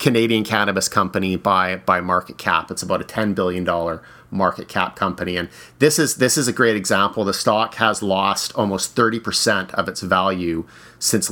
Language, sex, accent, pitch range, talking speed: English, male, American, 90-105 Hz, 185 wpm